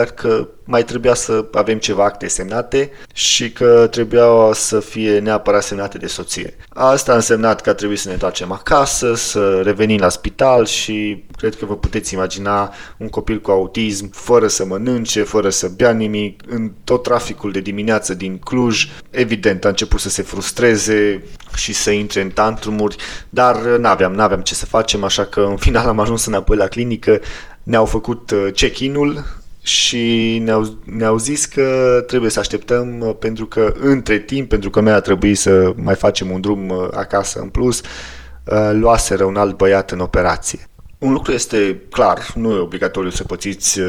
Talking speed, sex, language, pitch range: 170 wpm, male, Romanian, 95-115 Hz